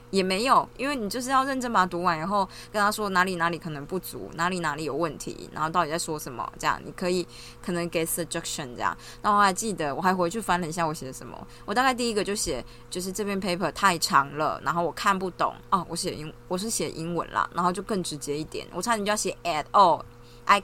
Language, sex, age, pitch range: Chinese, female, 20-39, 160-200 Hz